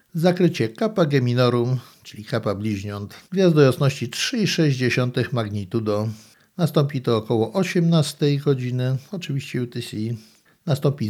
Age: 60-79